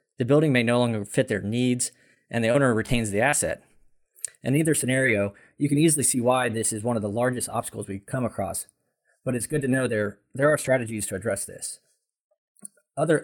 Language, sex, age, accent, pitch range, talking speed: English, male, 20-39, American, 110-135 Hz, 205 wpm